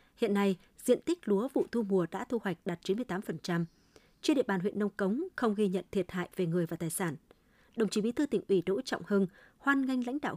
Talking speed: 255 wpm